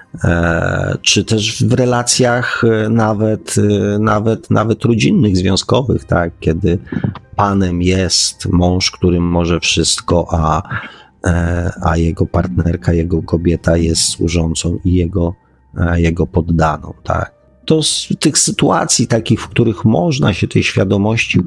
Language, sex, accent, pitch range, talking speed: Polish, male, native, 85-110 Hz, 115 wpm